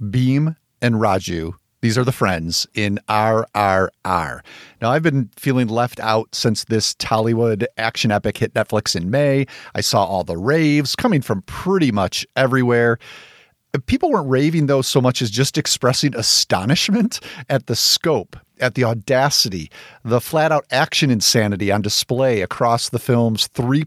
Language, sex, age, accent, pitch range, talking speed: English, male, 40-59, American, 110-135 Hz, 155 wpm